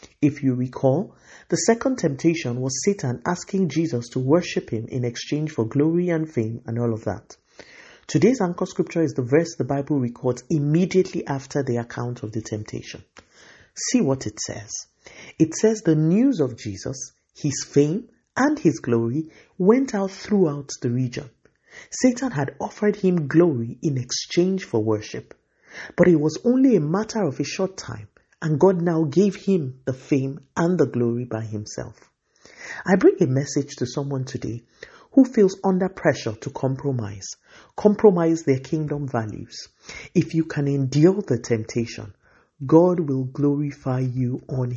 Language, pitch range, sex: English, 125-175 Hz, male